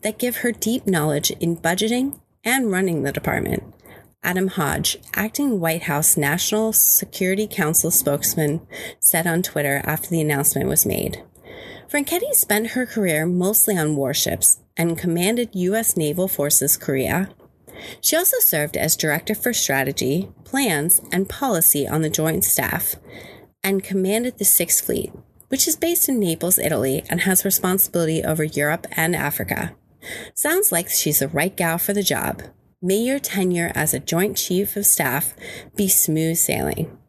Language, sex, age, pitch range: English, female, 30-49, 155-215 Hz